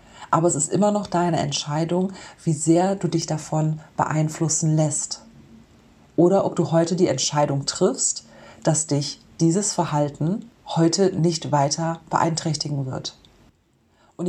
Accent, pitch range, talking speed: German, 160-190 Hz, 130 wpm